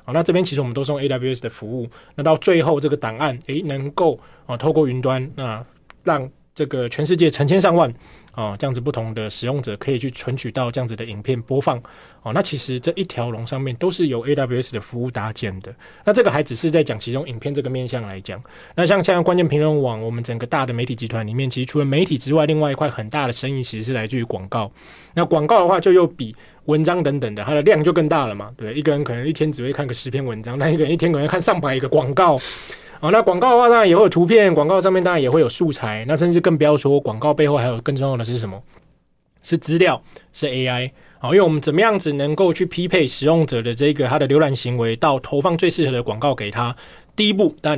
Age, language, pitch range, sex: 20-39, Chinese, 125-155 Hz, male